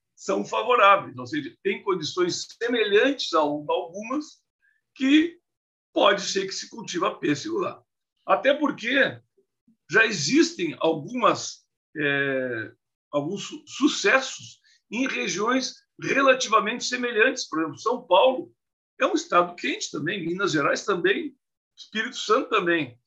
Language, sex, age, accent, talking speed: Portuguese, male, 60-79, Brazilian, 115 wpm